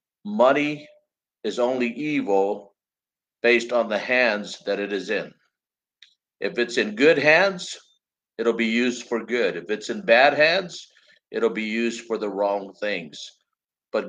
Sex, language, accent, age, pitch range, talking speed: male, English, American, 50-69, 105-130 Hz, 150 wpm